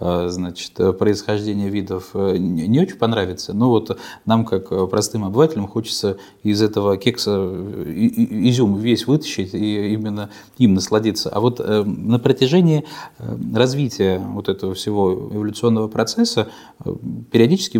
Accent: native